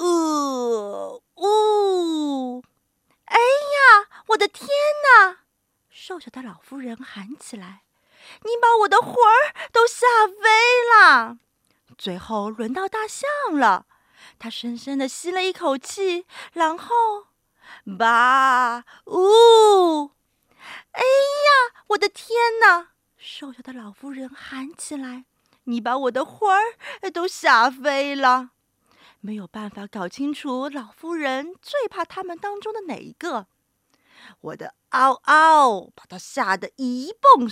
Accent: native